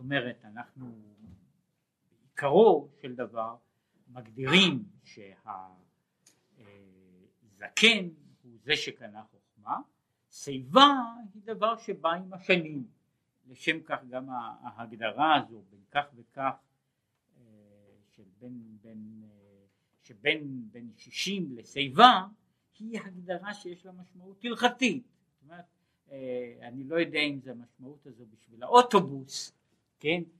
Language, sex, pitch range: Hebrew, male, 120-185 Hz